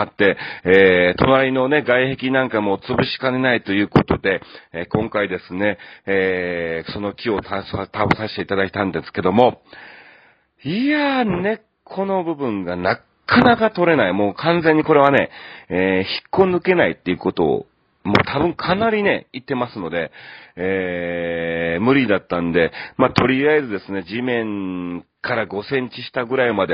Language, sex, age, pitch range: Japanese, male, 40-59, 95-125 Hz